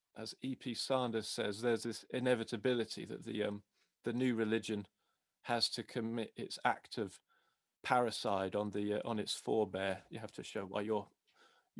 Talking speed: 170 wpm